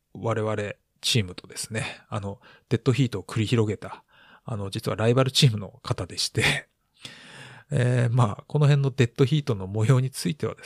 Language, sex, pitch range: Japanese, male, 100-130 Hz